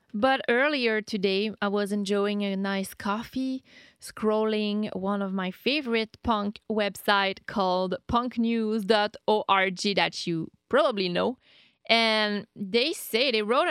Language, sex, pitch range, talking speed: English, female, 195-235 Hz, 120 wpm